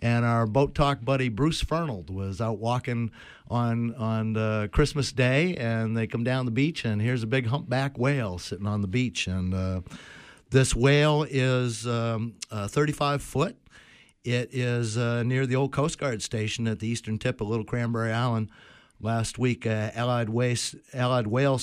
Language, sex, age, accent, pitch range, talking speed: English, male, 50-69, American, 105-130 Hz, 180 wpm